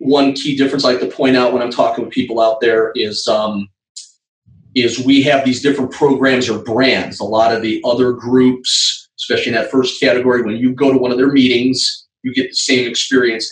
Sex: male